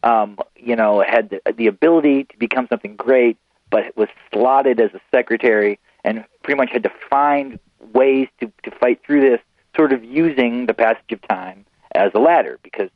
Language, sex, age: English, male, 40-59